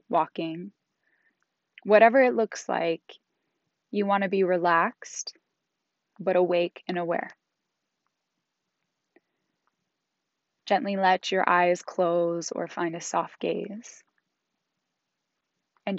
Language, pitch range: English, 170-195 Hz